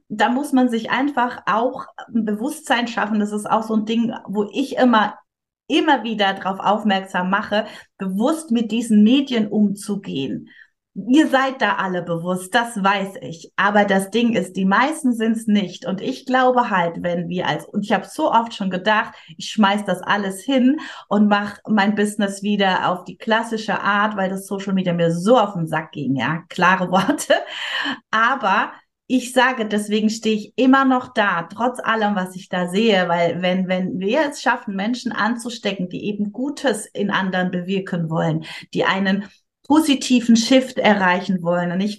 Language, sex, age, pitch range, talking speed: German, female, 30-49, 195-235 Hz, 175 wpm